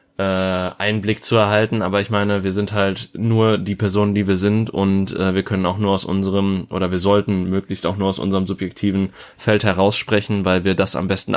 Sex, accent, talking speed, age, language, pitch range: male, German, 200 wpm, 20-39, German, 95-110 Hz